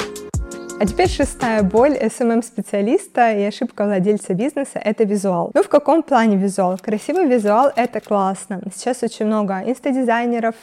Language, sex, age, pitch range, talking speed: Russian, female, 20-39, 210-255 Hz, 135 wpm